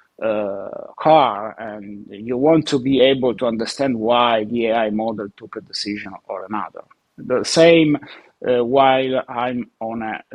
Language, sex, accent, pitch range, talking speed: English, male, Italian, 115-150 Hz, 160 wpm